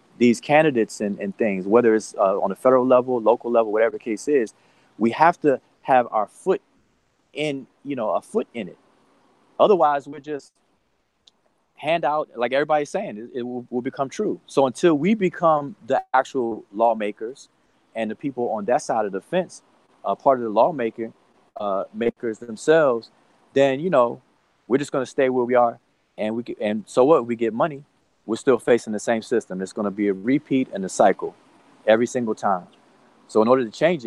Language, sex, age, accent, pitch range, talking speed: English, male, 30-49, American, 110-140 Hz, 200 wpm